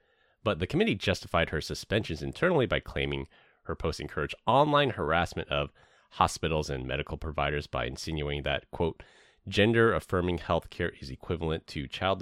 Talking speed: 150 wpm